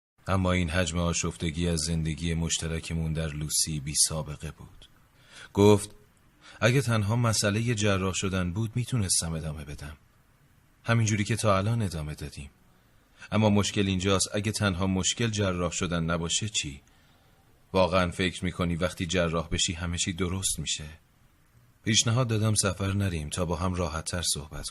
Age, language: 30-49, Persian